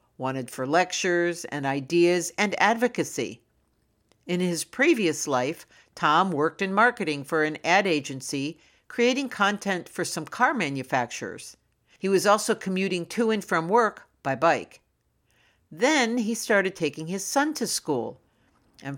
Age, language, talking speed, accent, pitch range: 60-79, English, 140 wpm, American, 145-200 Hz